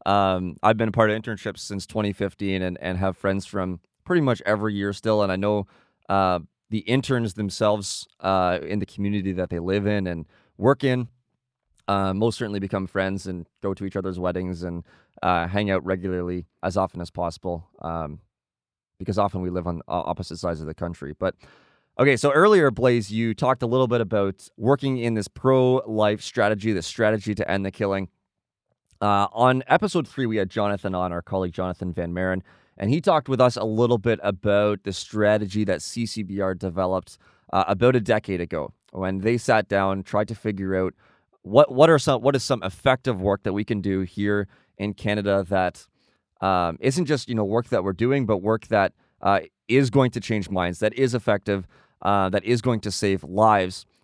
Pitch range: 95-115 Hz